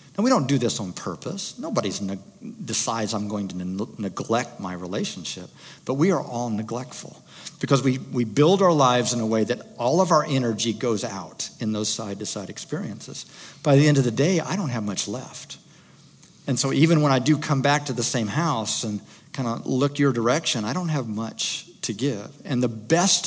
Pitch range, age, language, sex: 110-155 Hz, 50-69, English, male